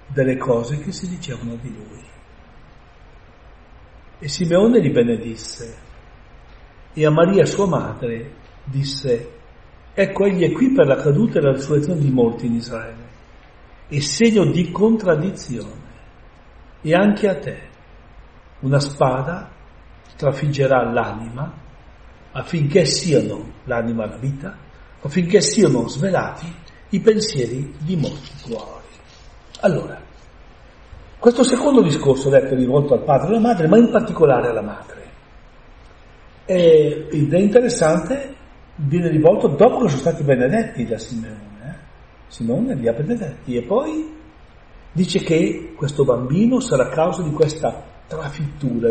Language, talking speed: Italian, 125 wpm